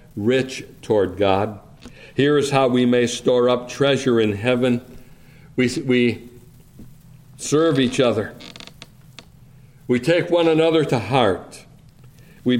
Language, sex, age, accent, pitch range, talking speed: English, male, 60-79, American, 130-155 Hz, 120 wpm